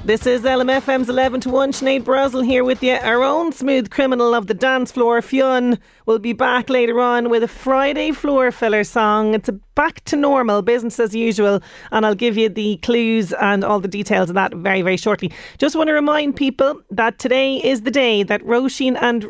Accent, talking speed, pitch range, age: Irish, 210 wpm, 205-255 Hz, 30-49